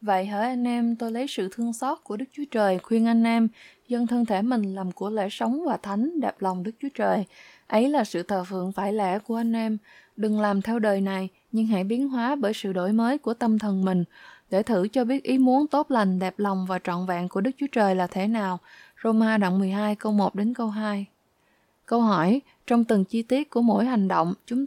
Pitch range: 205-245 Hz